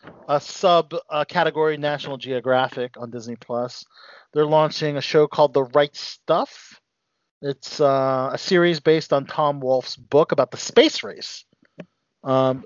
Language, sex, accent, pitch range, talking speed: English, male, American, 125-160 Hz, 145 wpm